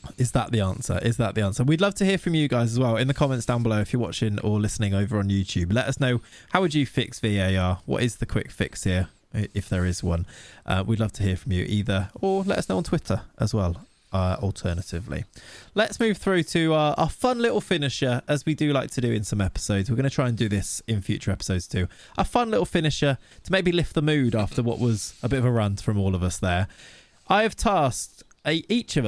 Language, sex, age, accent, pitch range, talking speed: English, male, 20-39, British, 100-155 Hz, 250 wpm